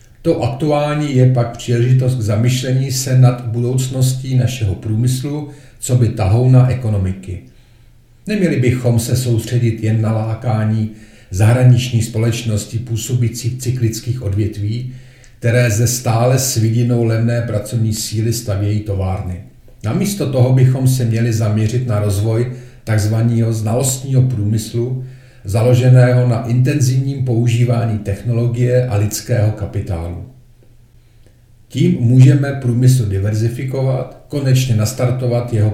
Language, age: Czech, 40-59